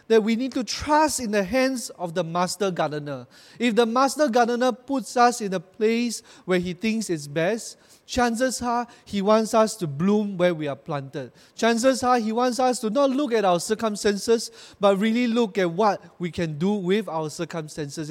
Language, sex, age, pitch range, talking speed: English, male, 30-49, 180-240 Hz, 195 wpm